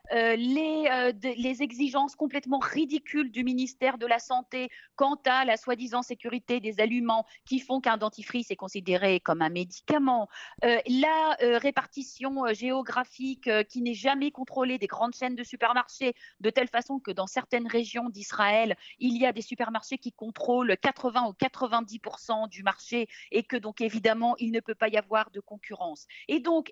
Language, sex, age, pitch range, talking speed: French, female, 40-59, 220-270 Hz, 175 wpm